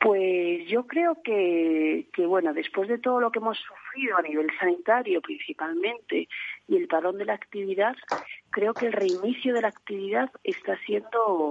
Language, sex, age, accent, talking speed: Spanish, female, 40-59, Spanish, 165 wpm